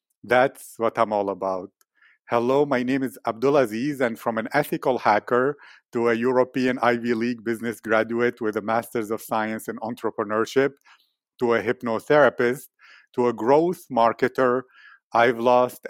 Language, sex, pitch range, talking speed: English, male, 115-130 Hz, 145 wpm